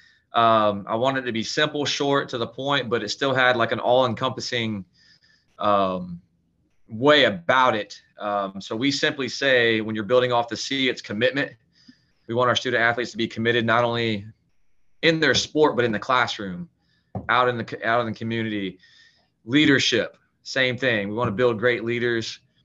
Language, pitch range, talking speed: English, 110-130 Hz, 185 wpm